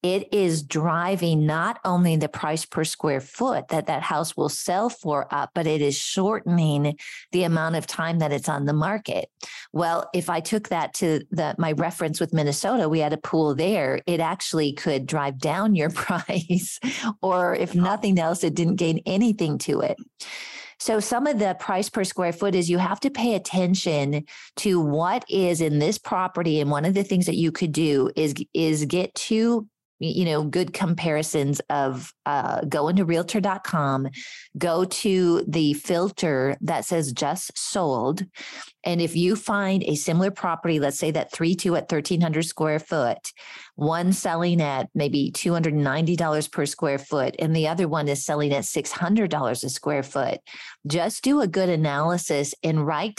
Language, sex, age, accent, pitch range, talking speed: English, female, 40-59, American, 150-185 Hz, 175 wpm